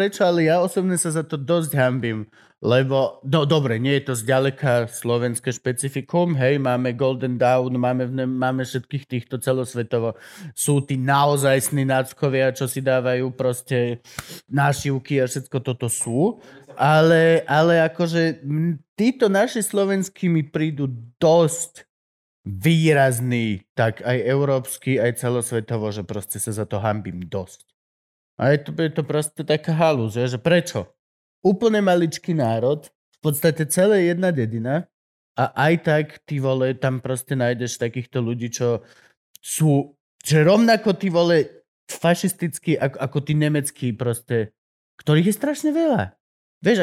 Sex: male